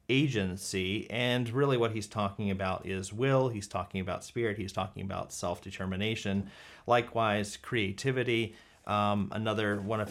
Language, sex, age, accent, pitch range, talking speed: English, male, 30-49, American, 100-125 Hz, 135 wpm